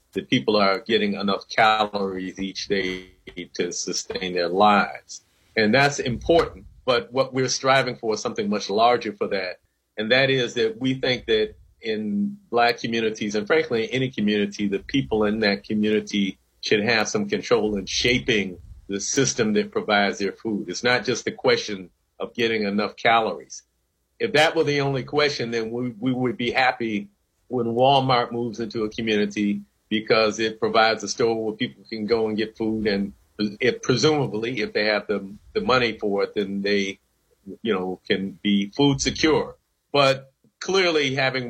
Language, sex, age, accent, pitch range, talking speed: English, male, 50-69, American, 100-130 Hz, 170 wpm